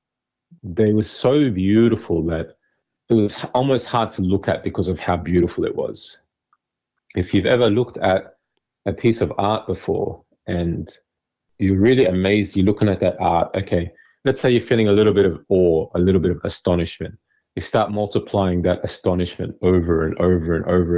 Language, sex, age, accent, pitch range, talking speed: English, male, 30-49, Australian, 90-110 Hz, 175 wpm